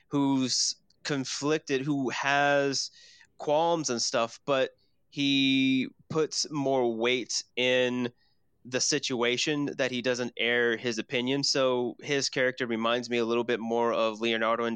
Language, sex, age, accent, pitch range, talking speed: English, male, 20-39, American, 115-135 Hz, 135 wpm